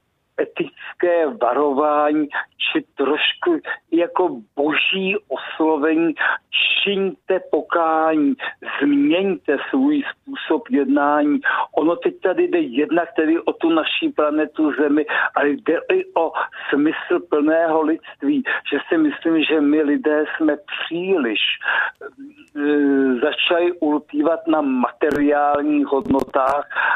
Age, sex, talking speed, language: 50-69, male, 100 wpm, Czech